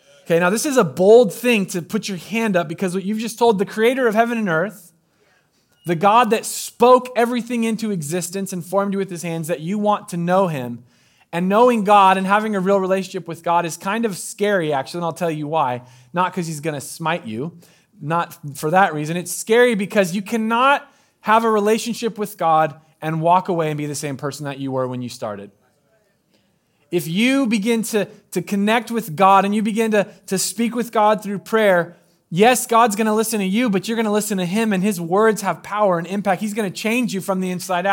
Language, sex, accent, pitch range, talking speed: English, male, American, 180-225 Hz, 225 wpm